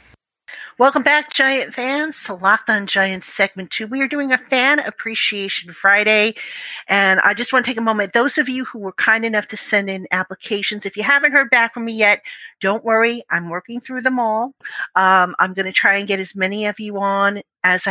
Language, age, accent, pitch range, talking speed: English, 50-69, American, 185-230 Hz, 215 wpm